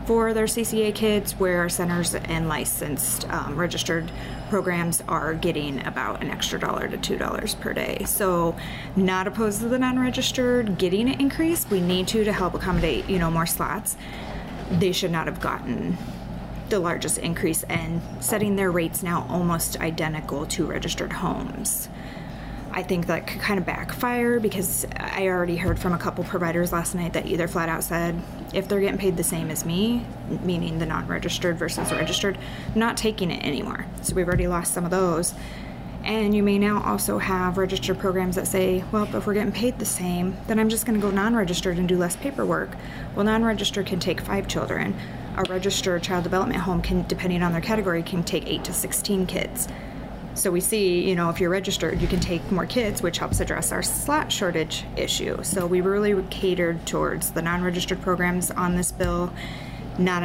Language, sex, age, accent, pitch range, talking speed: English, female, 20-39, American, 170-200 Hz, 185 wpm